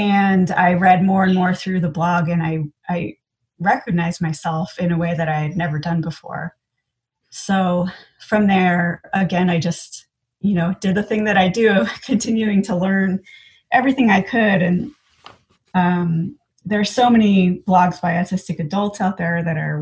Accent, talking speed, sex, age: American, 175 wpm, female, 30-49